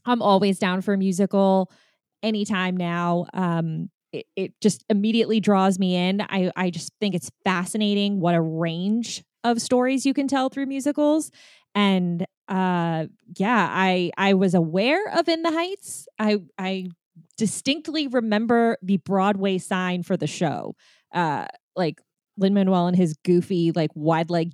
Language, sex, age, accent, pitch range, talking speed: English, female, 20-39, American, 180-220 Hz, 155 wpm